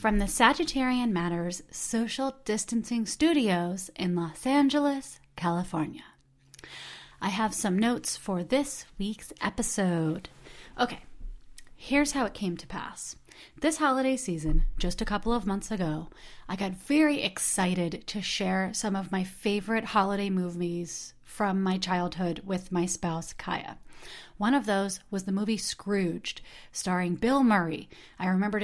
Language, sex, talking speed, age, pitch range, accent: English, female, 140 wpm, 30-49, 175-220 Hz, American